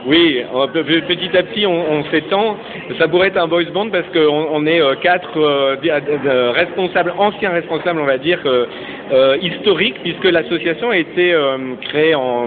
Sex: male